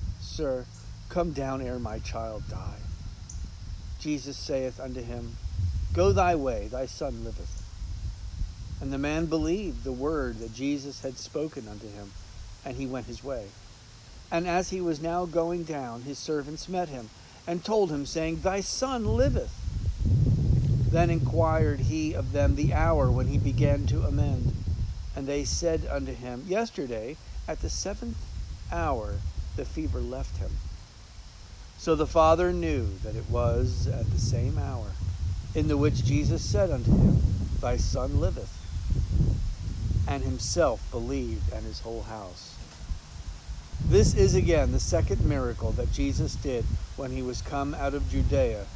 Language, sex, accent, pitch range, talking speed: English, male, American, 90-135 Hz, 150 wpm